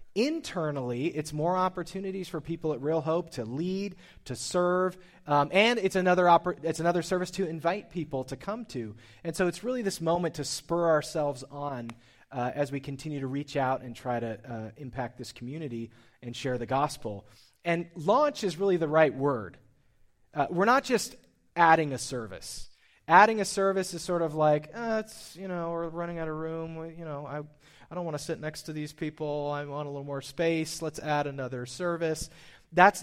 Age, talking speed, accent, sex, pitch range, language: 30-49, 200 wpm, American, male, 135-175 Hz, English